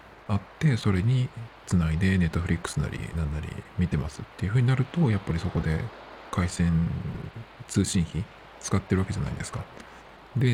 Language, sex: Japanese, male